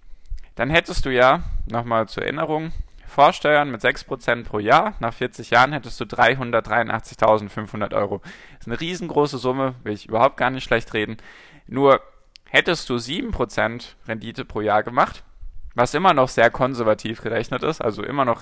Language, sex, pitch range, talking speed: German, male, 105-130 Hz, 160 wpm